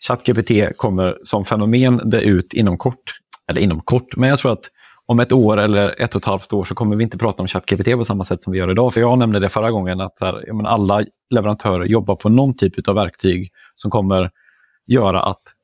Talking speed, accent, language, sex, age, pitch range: 225 wpm, native, Swedish, male, 30-49, 95-120 Hz